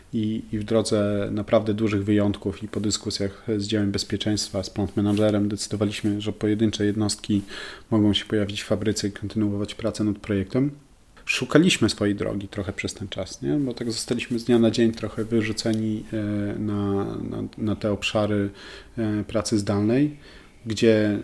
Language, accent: Polish, native